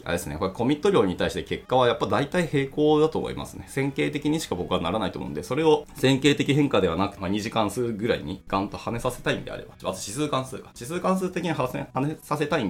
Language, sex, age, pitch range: Japanese, male, 20-39, 95-140 Hz